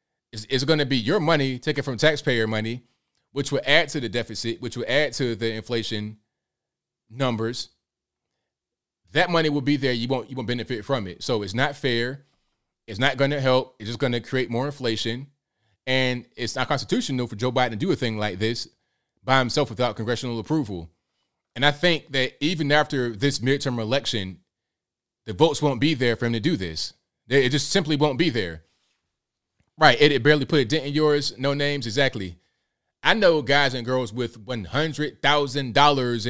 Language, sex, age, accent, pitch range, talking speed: English, male, 30-49, American, 115-140 Hz, 185 wpm